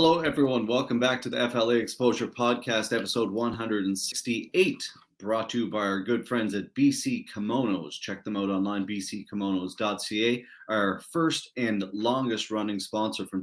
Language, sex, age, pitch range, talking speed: English, male, 30-49, 100-120 Hz, 145 wpm